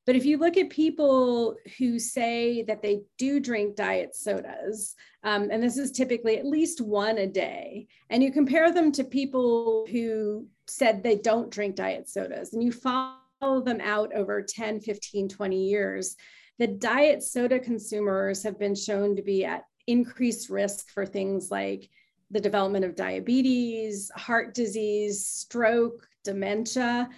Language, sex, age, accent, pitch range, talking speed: English, female, 40-59, American, 205-245 Hz, 155 wpm